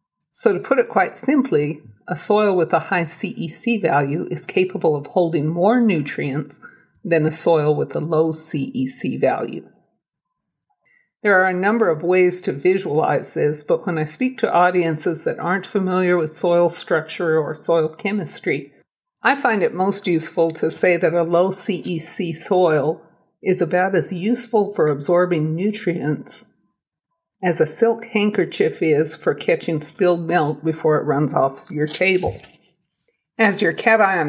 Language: English